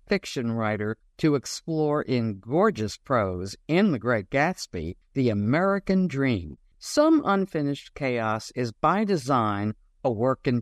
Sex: male